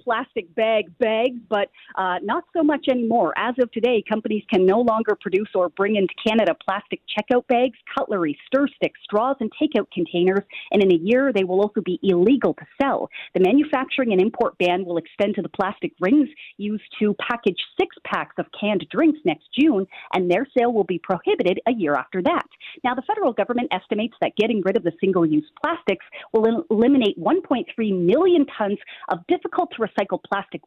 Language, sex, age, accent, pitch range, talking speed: English, female, 40-59, American, 195-285 Hz, 185 wpm